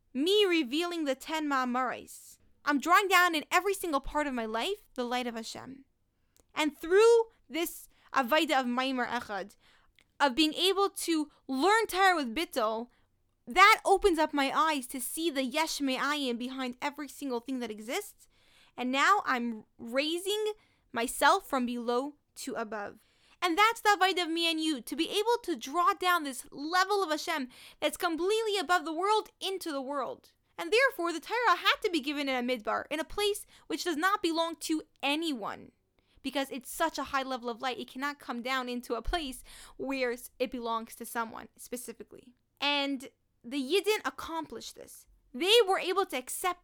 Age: 10-29